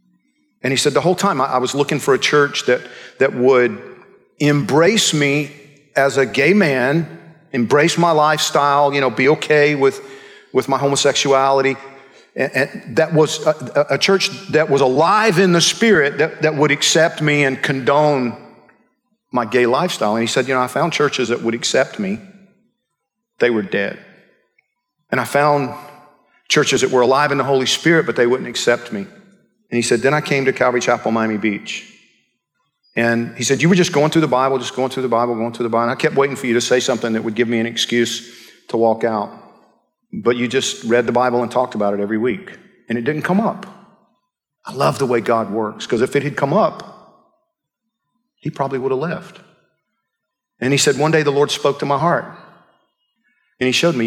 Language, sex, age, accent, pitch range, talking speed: English, male, 50-69, American, 125-170 Hz, 205 wpm